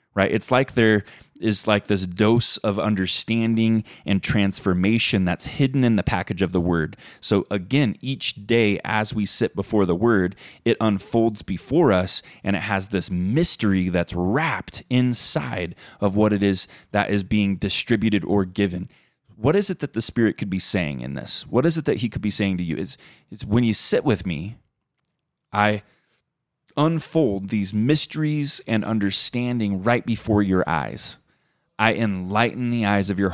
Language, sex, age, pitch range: English, male, 20-39, 95-120 Hz